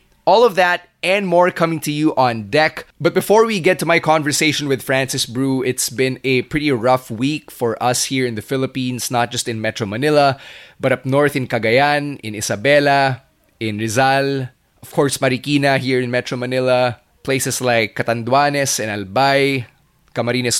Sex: male